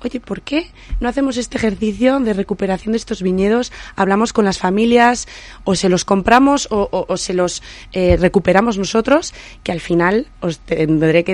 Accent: Spanish